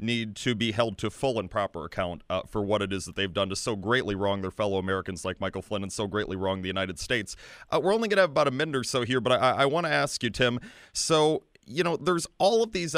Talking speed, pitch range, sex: 275 wpm, 105-145 Hz, male